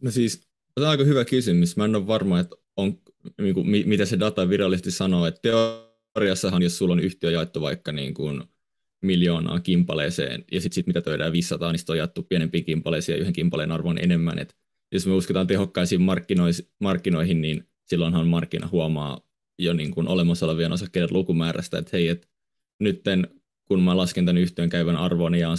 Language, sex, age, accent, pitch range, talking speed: Finnish, male, 20-39, native, 85-95 Hz, 175 wpm